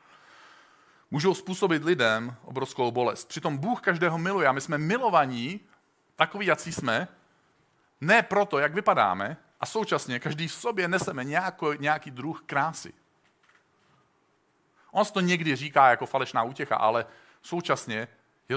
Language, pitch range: Czech, 115-165 Hz